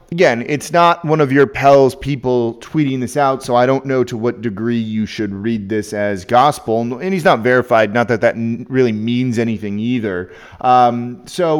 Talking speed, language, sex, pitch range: 190 wpm, English, male, 115-145 Hz